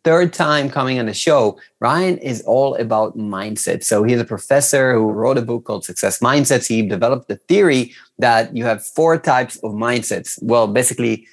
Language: English